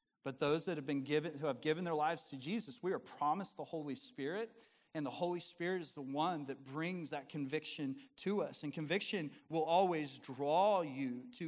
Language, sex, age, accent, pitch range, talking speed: English, male, 30-49, American, 145-190 Hz, 205 wpm